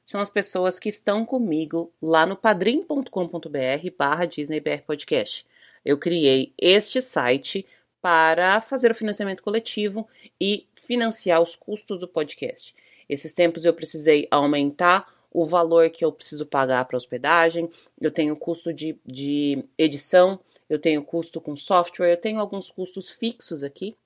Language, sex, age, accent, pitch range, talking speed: Portuguese, female, 30-49, Brazilian, 150-200 Hz, 140 wpm